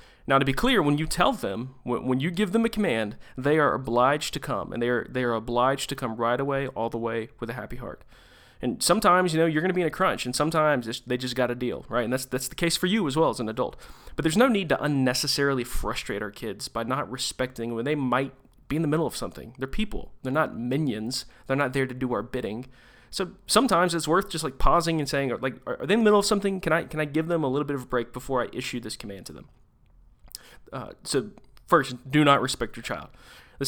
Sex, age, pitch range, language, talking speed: male, 30-49, 120-145 Hz, English, 260 wpm